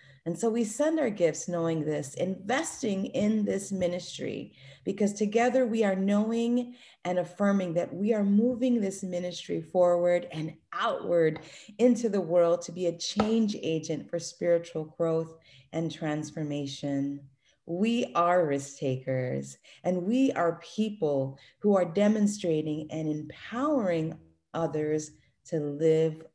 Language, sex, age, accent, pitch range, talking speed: English, female, 30-49, American, 160-205 Hz, 130 wpm